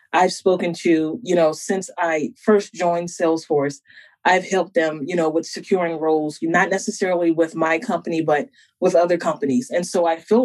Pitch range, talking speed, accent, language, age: 165-200 Hz, 180 wpm, American, English, 20-39